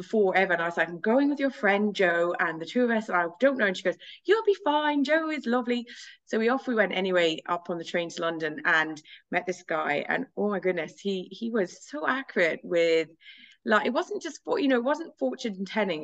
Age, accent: 20-39, British